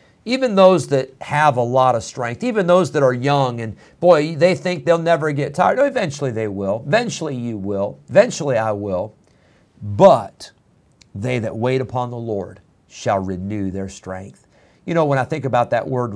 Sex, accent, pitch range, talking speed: male, American, 115-150 Hz, 180 wpm